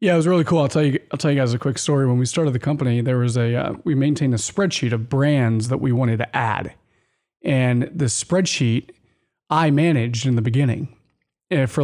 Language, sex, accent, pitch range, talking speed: English, male, American, 125-155 Hz, 225 wpm